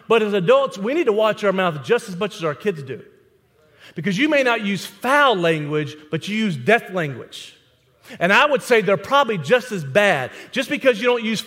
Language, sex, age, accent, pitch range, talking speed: English, male, 40-59, American, 180-245 Hz, 220 wpm